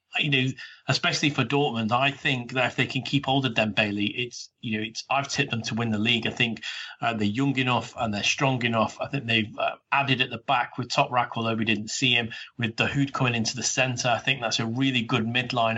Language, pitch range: English, 110-130 Hz